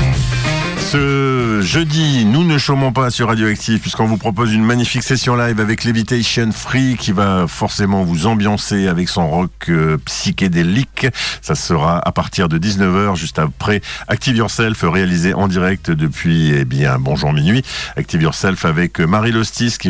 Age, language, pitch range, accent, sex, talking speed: 50-69, French, 85-120 Hz, French, male, 155 wpm